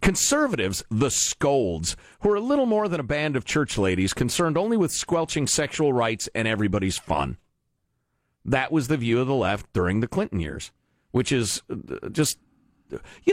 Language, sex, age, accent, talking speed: English, male, 50-69, American, 170 wpm